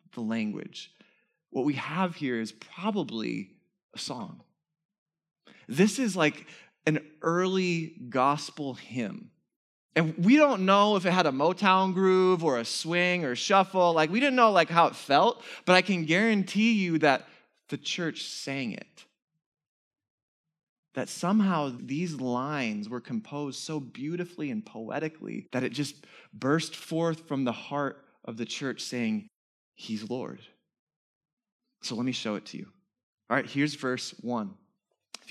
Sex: male